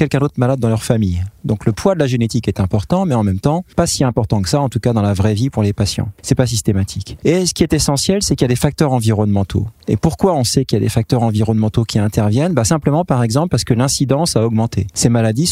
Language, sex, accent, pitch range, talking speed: English, male, French, 110-135 Hz, 275 wpm